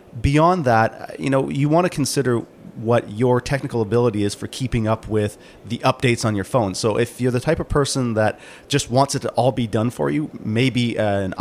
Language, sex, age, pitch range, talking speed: English, male, 30-49, 110-130 Hz, 215 wpm